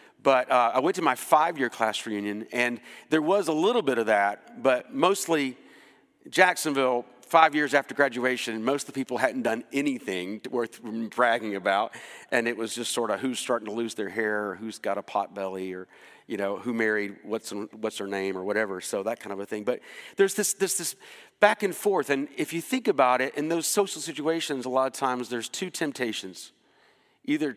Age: 40-59